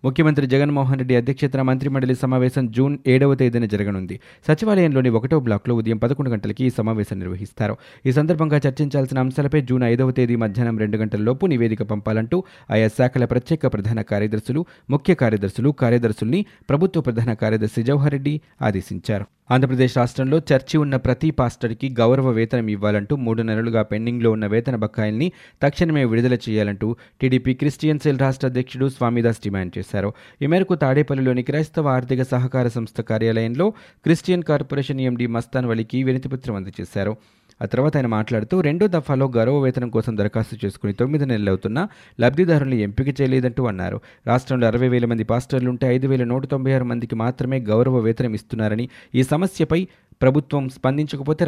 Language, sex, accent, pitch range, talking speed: Telugu, male, native, 110-135 Hz, 135 wpm